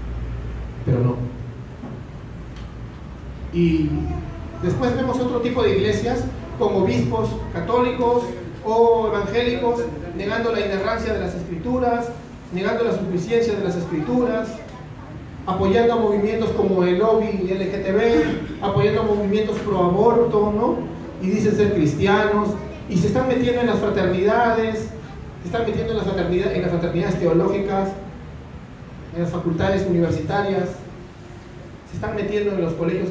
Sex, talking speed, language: male, 125 wpm, Spanish